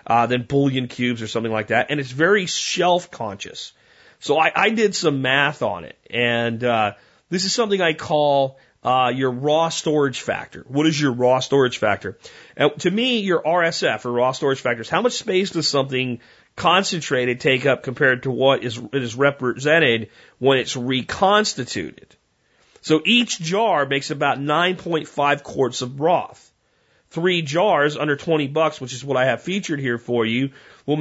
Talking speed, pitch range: 175 wpm, 135-175 Hz